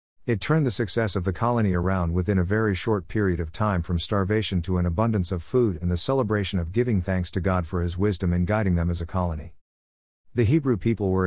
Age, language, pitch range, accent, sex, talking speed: 50-69, English, 90-115 Hz, American, male, 230 wpm